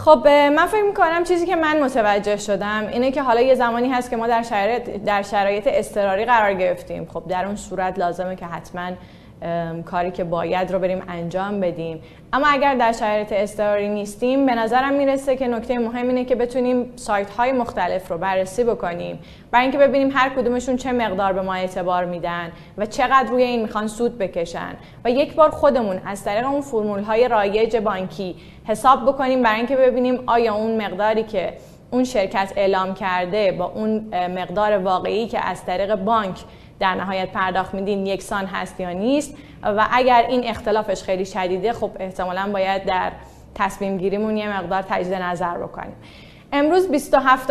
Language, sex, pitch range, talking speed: Persian, female, 190-250 Hz, 170 wpm